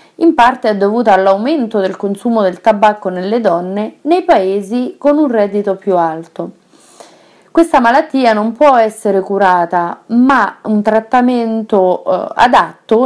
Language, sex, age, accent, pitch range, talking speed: Italian, female, 30-49, native, 195-275 Hz, 130 wpm